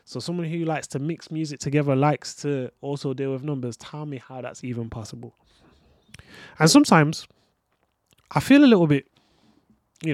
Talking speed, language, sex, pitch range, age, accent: 165 wpm, English, male, 120-150 Hz, 20-39, British